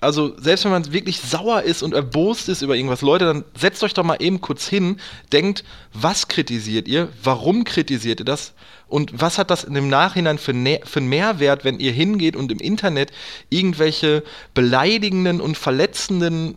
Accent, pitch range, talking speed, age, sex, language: German, 135-180 Hz, 175 wpm, 30-49, male, German